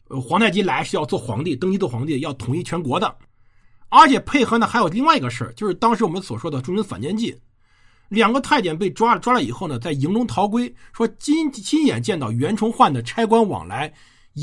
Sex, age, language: male, 50-69, Chinese